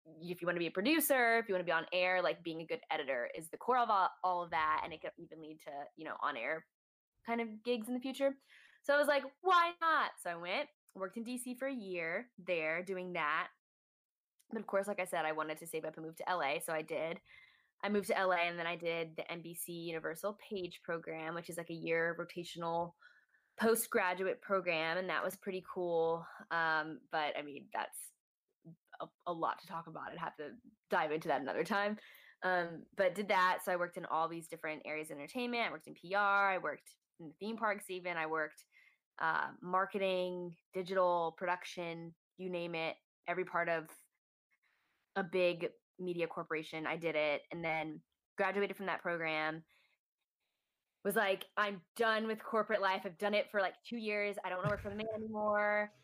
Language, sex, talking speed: English, female, 210 wpm